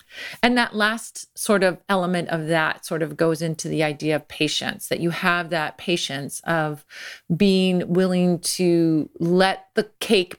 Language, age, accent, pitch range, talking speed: English, 40-59, American, 160-190 Hz, 160 wpm